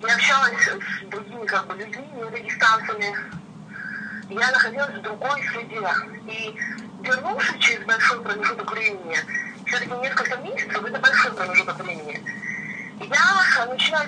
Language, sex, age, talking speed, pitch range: Russian, female, 30-49, 125 wpm, 210-250 Hz